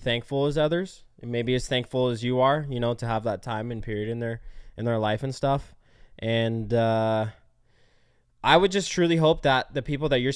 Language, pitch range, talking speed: English, 115-140 Hz, 215 wpm